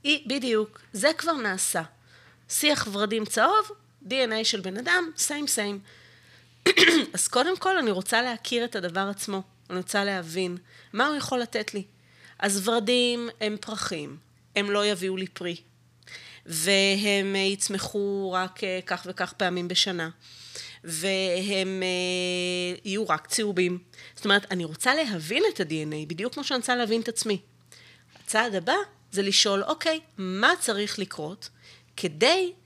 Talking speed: 135 wpm